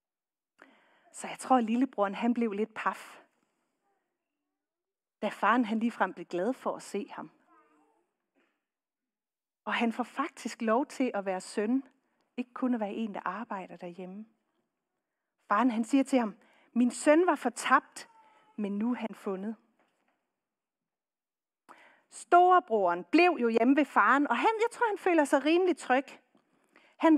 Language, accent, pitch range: Danish, native, 230-315 Hz